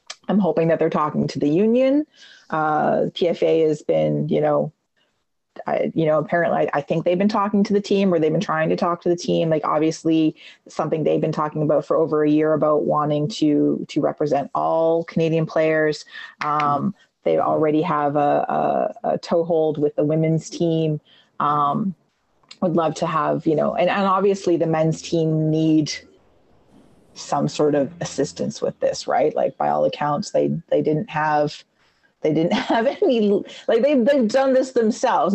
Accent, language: American, English